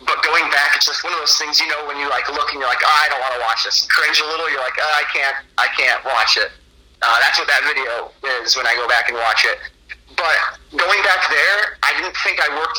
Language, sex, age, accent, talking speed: English, male, 30-49, American, 280 wpm